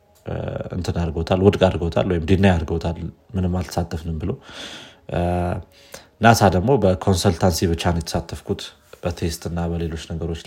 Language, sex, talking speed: Amharic, male, 105 wpm